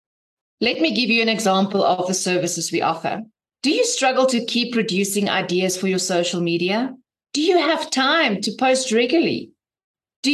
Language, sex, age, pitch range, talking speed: English, female, 30-49, 205-280 Hz, 175 wpm